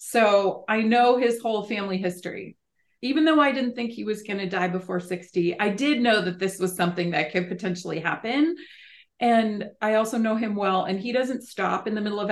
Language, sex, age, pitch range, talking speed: English, female, 30-49, 180-225 Hz, 215 wpm